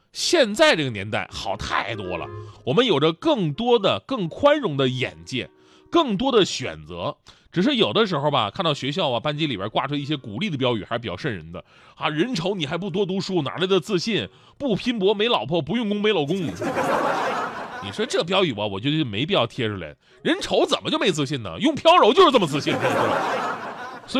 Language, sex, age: Chinese, male, 30-49